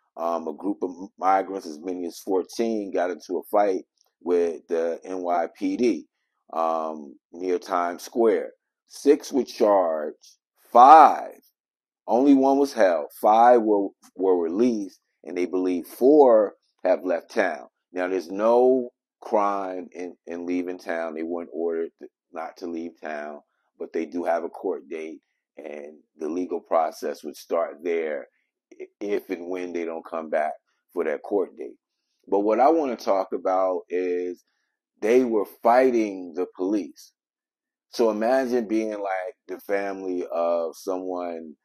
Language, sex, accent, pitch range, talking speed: English, male, American, 85-130 Hz, 145 wpm